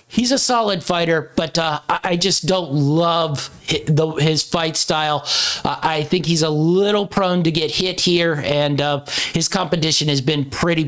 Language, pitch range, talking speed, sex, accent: English, 150-180 Hz, 170 wpm, male, American